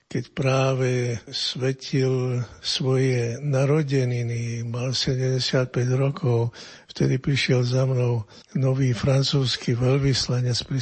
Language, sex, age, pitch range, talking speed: Slovak, male, 60-79, 110-135 Hz, 90 wpm